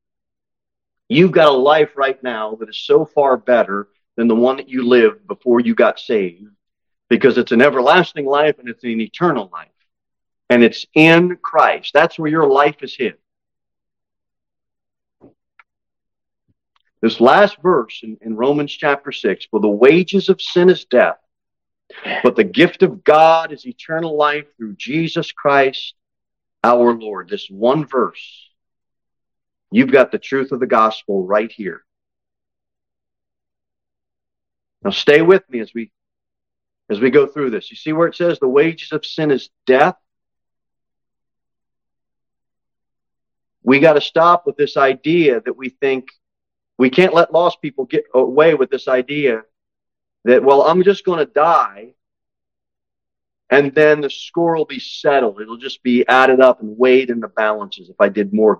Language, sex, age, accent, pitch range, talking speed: English, male, 40-59, American, 115-170 Hz, 155 wpm